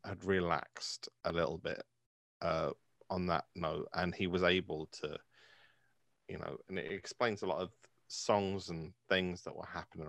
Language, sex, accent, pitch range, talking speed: English, male, British, 90-120 Hz, 165 wpm